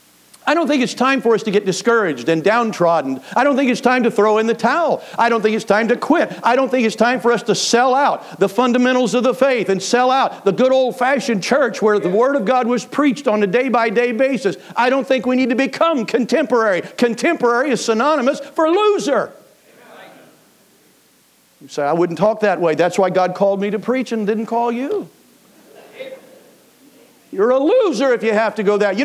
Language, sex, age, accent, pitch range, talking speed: English, male, 50-69, American, 195-275 Hz, 215 wpm